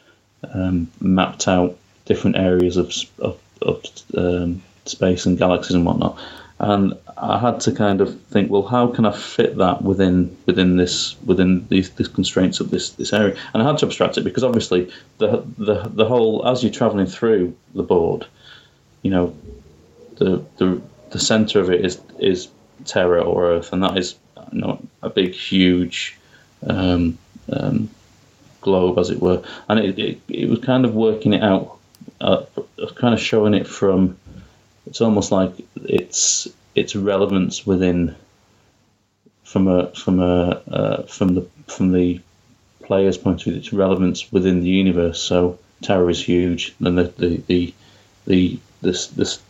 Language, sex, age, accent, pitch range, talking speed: English, male, 30-49, British, 90-105 Hz, 160 wpm